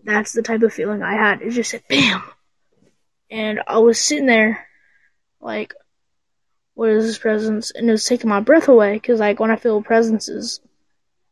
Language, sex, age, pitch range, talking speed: English, female, 10-29, 210-235 Hz, 190 wpm